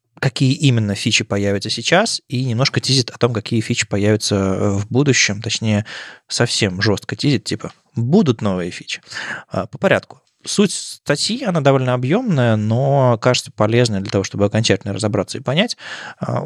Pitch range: 105-125 Hz